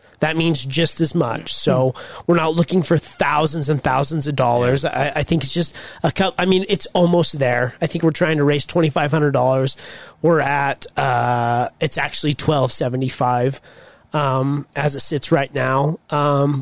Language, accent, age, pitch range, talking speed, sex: English, American, 30-49, 140-170 Hz, 175 wpm, male